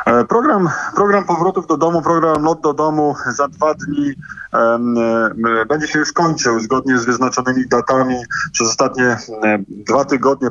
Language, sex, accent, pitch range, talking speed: Polish, male, native, 125-140 Hz, 145 wpm